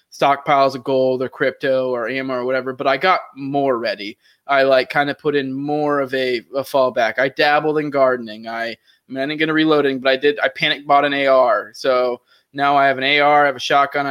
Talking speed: 225 wpm